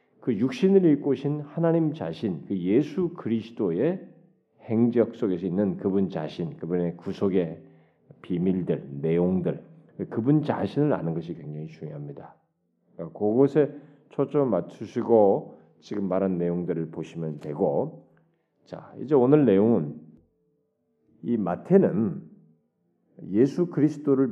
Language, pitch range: Korean, 100-150 Hz